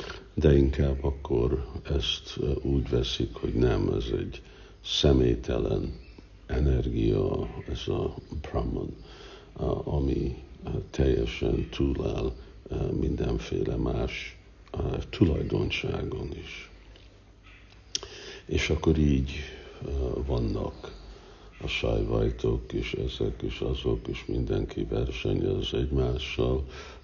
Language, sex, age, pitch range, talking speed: Hungarian, male, 60-79, 65-80 Hz, 80 wpm